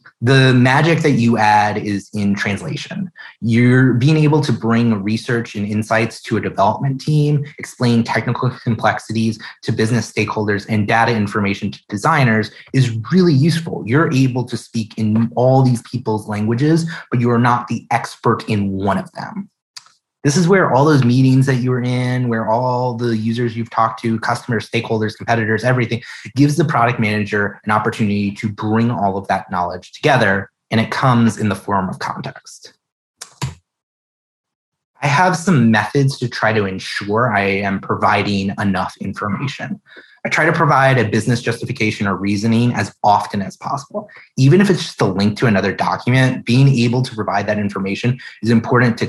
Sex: male